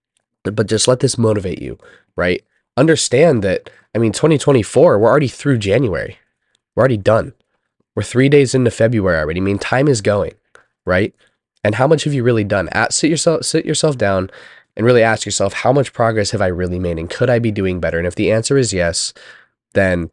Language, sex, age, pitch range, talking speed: English, male, 20-39, 95-120 Hz, 205 wpm